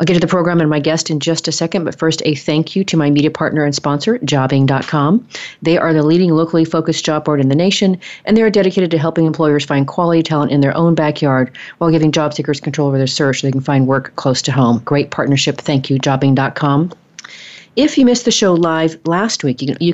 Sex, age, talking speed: female, 40-59, 240 wpm